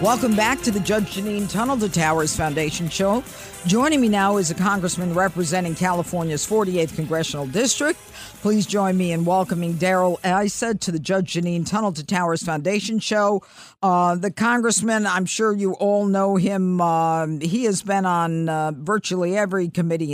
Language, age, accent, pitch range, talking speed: English, 50-69, American, 160-205 Hz, 165 wpm